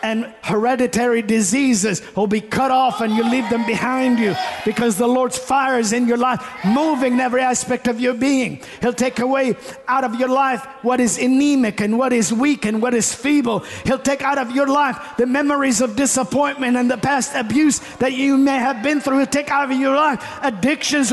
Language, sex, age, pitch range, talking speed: English, male, 50-69, 210-265 Hz, 205 wpm